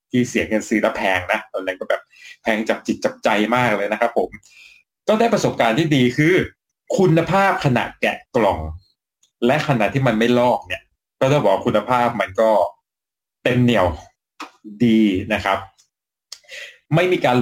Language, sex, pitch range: Thai, male, 115-155 Hz